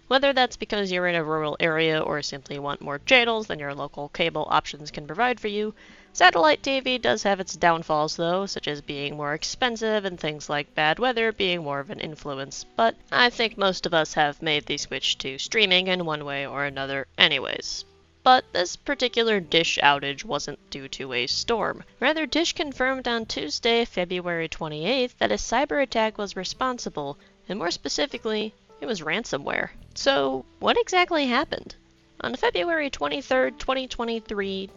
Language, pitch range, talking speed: English, 150-235 Hz, 170 wpm